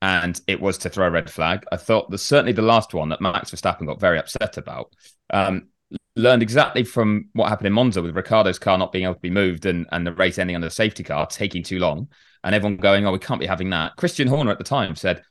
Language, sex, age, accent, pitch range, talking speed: English, male, 30-49, British, 90-120 Hz, 260 wpm